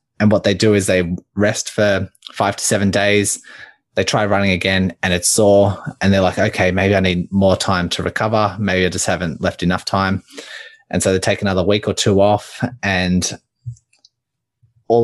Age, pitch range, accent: 20-39, 95-110 Hz, Australian